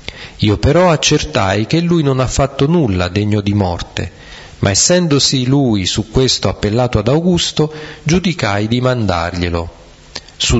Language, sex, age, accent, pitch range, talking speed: Italian, male, 40-59, native, 100-140 Hz, 135 wpm